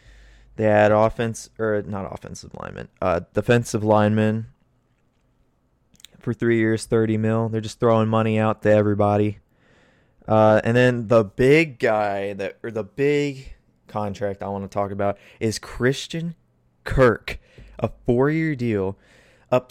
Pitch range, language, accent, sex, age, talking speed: 100-120 Hz, English, American, male, 20-39, 135 wpm